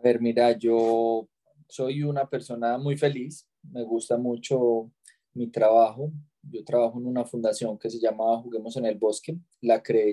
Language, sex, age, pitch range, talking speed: Spanish, male, 20-39, 120-150 Hz, 165 wpm